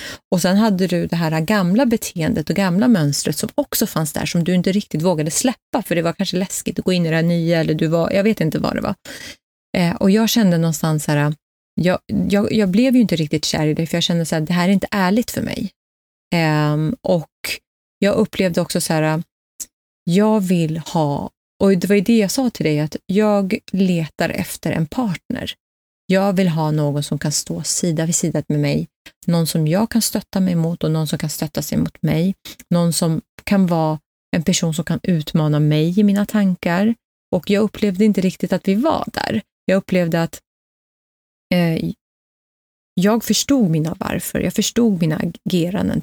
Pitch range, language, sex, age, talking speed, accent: 160-205 Hz, Swedish, female, 30-49, 200 wpm, native